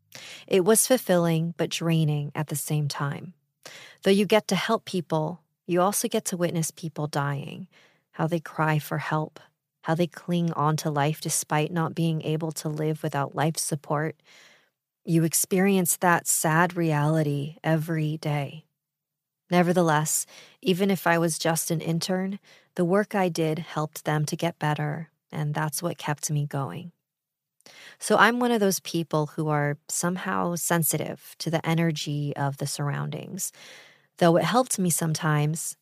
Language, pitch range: English, 150-175 Hz